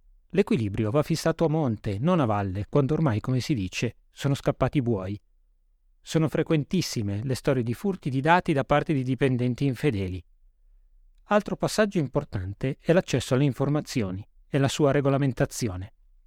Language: Italian